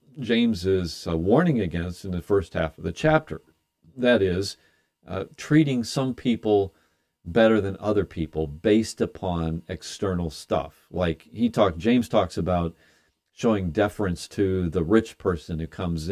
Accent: American